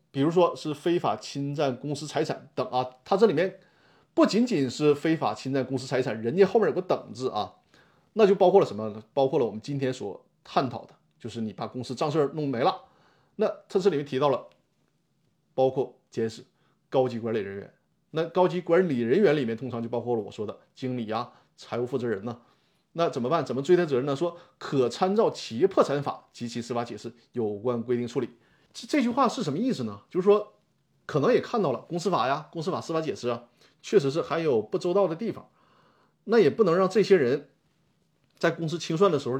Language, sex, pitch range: Chinese, male, 120-180 Hz